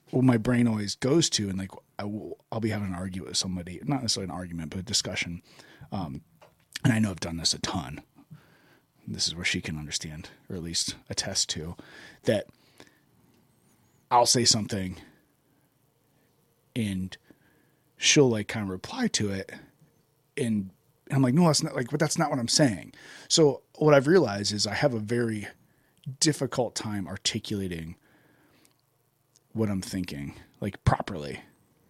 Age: 30-49